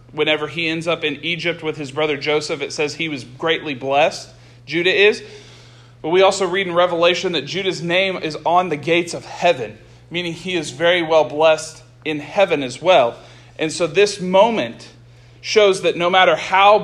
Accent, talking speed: American, 185 wpm